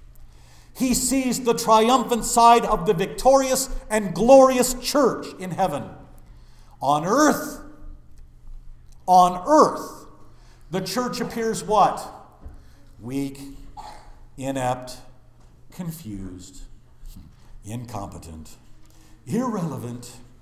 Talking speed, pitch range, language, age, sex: 75 wpm, 120-195 Hz, English, 50-69, male